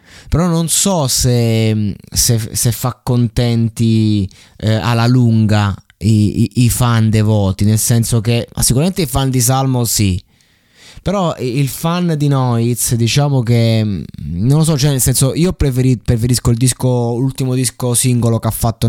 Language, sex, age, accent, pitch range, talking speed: Italian, male, 20-39, native, 105-125 Hz, 160 wpm